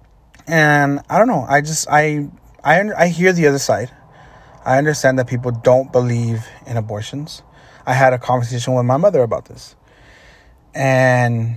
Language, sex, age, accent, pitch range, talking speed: English, male, 30-49, American, 115-140 Hz, 160 wpm